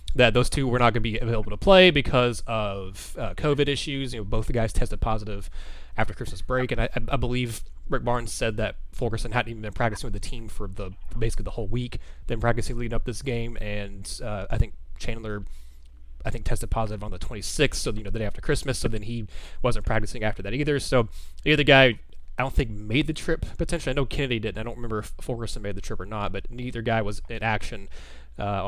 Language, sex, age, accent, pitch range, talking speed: English, male, 20-39, American, 105-135 Hz, 245 wpm